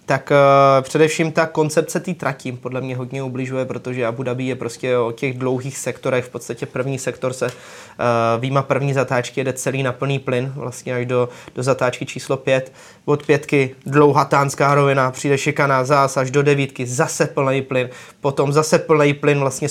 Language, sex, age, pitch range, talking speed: Czech, male, 20-39, 130-150 Hz, 185 wpm